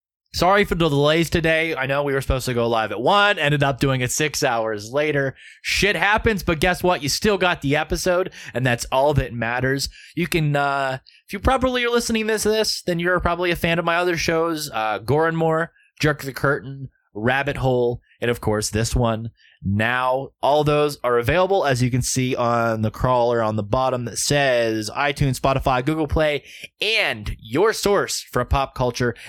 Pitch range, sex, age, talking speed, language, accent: 125-175 Hz, male, 20-39, 195 wpm, English, American